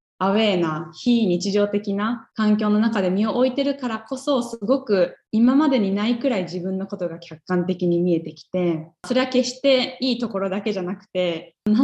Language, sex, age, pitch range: Japanese, female, 20-39, 175-235 Hz